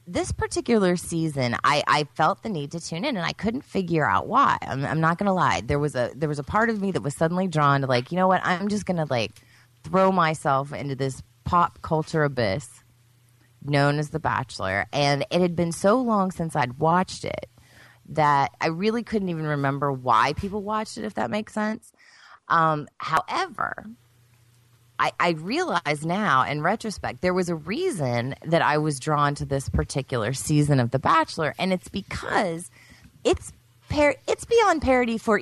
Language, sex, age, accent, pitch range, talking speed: English, female, 30-49, American, 135-185 Hz, 190 wpm